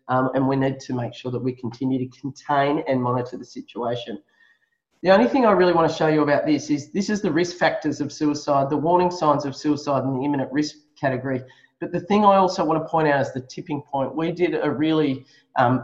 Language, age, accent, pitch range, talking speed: English, 30-49, Australian, 135-165 Hz, 240 wpm